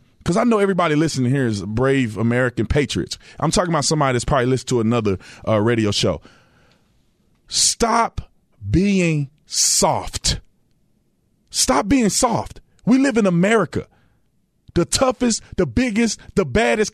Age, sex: 30-49, male